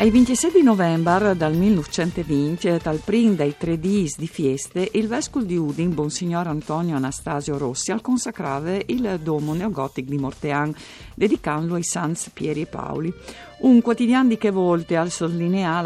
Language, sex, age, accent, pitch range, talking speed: Italian, female, 50-69, native, 155-195 Hz, 155 wpm